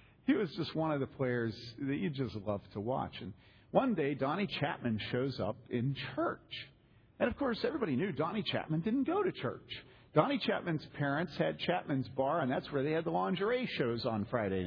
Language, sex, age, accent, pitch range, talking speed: English, male, 50-69, American, 125-185 Hz, 200 wpm